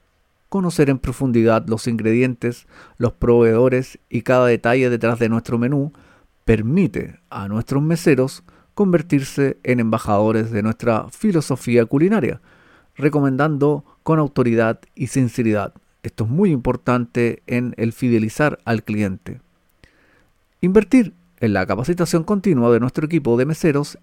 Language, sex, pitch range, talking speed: Spanish, male, 115-150 Hz, 120 wpm